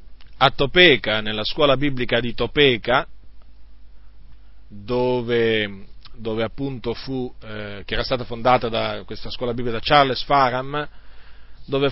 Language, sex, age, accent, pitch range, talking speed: Italian, male, 40-59, native, 115-155 Hz, 120 wpm